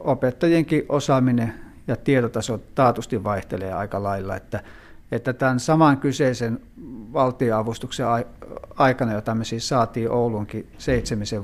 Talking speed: 110 wpm